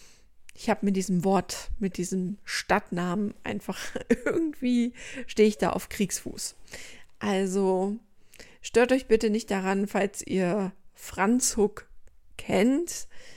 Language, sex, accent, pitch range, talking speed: German, female, German, 185-225 Hz, 115 wpm